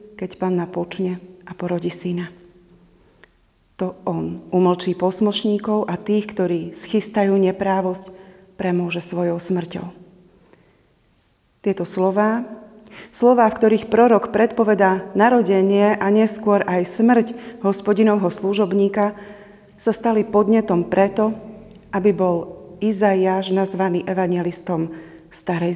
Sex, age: female, 30-49